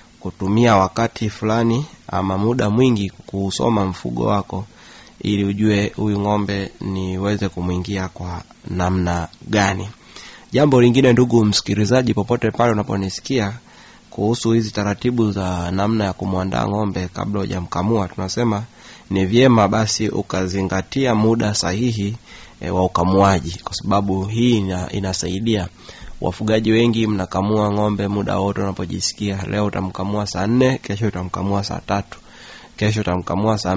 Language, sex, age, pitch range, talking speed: Swahili, male, 30-49, 95-110 Hz, 120 wpm